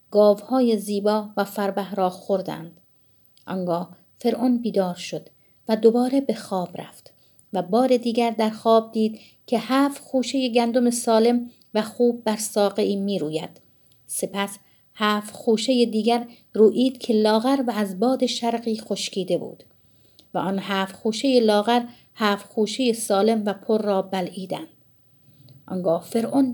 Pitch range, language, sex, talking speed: 195-245 Hz, Persian, female, 135 wpm